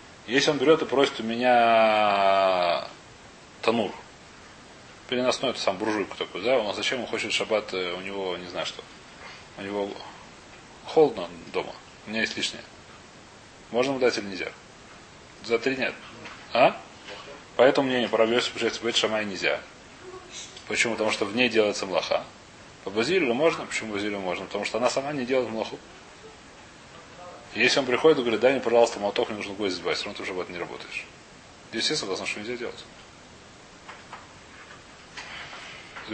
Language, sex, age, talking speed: Russian, male, 30-49, 155 wpm